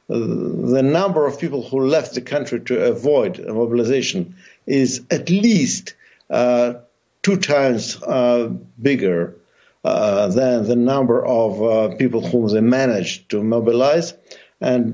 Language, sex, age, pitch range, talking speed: English, male, 60-79, 115-145 Hz, 130 wpm